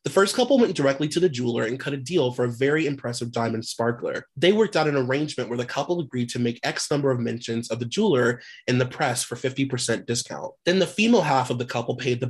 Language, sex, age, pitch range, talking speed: English, male, 20-39, 125-155 Hz, 250 wpm